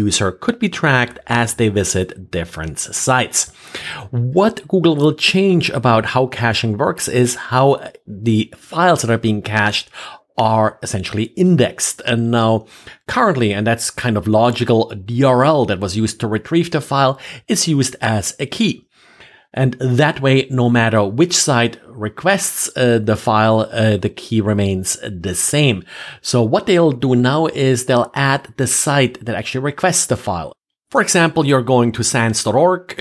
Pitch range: 110-135 Hz